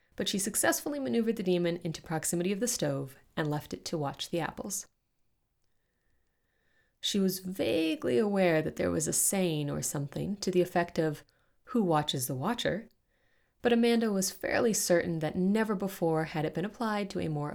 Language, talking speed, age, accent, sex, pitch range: English, 180 wpm, 30-49, American, female, 155-200 Hz